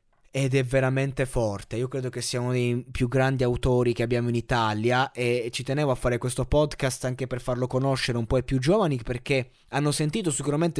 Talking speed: 205 wpm